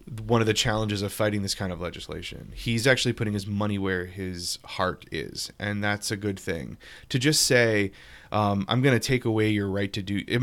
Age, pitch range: 20-39, 100-135 Hz